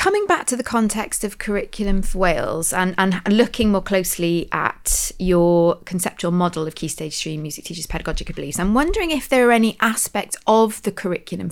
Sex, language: female, English